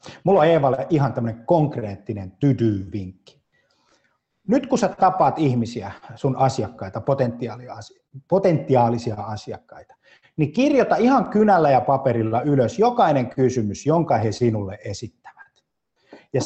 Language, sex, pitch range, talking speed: Finnish, male, 110-160 Hz, 110 wpm